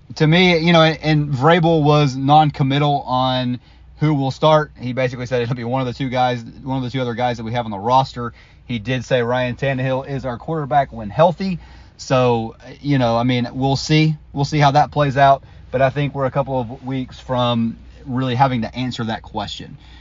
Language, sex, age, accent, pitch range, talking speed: English, male, 30-49, American, 110-135 Hz, 215 wpm